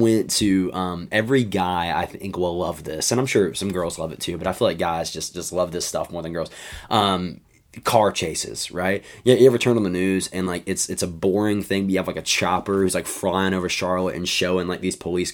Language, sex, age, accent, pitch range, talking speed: English, male, 20-39, American, 95-110 Hz, 250 wpm